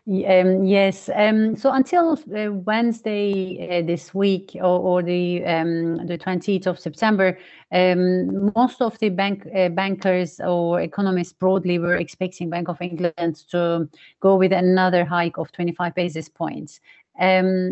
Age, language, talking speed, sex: 30-49, English, 150 wpm, female